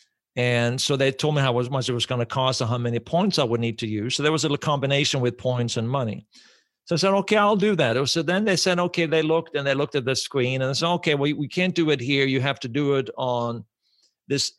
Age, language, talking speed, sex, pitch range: 50-69, English, 280 wpm, male, 120-145 Hz